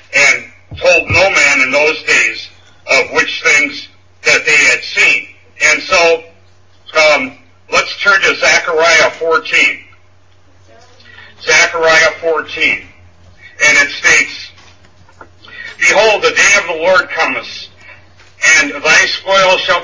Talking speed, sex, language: 115 wpm, male, English